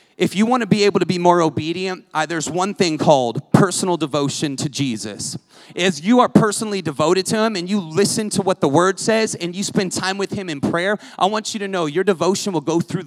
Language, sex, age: English, male, 30-49